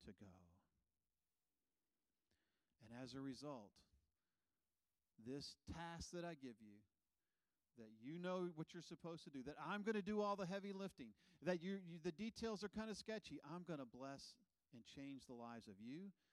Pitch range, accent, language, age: 110-165 Hz, American, English, 40-59